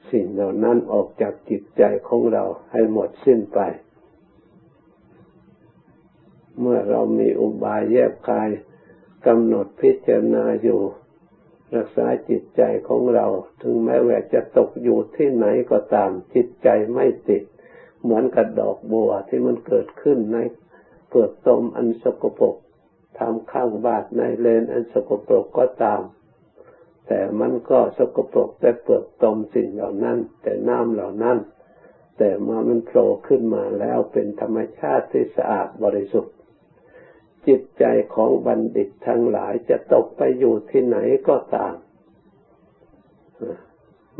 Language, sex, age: Thai, male, 60-79